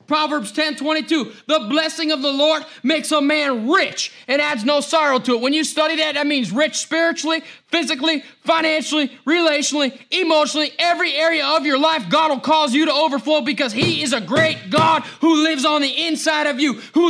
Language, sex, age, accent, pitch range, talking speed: English, male, 30-49, American, 255-320 Hz, 195 wpm